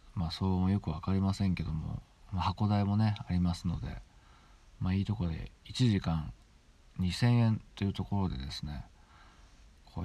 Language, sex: Japanese, male